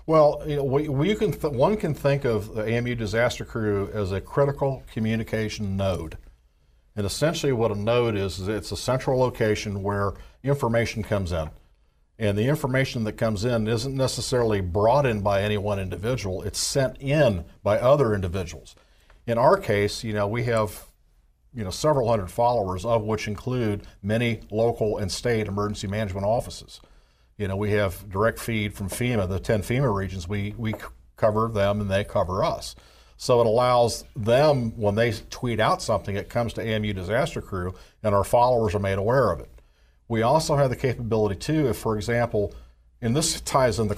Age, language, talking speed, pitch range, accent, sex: 50-69, English, 185 wpm, 100-120 Hz, American, male